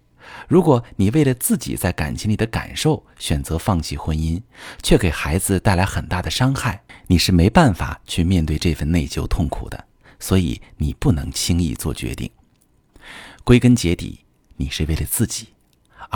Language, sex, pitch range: Chinese, male, 85-115 Hz